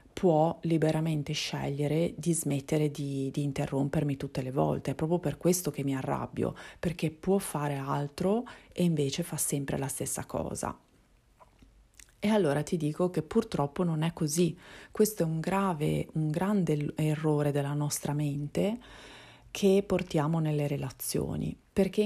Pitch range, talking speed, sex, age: 145-175 Hz, 145 wpm, female, 30-49